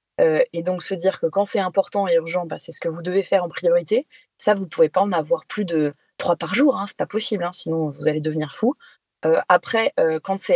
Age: 20-39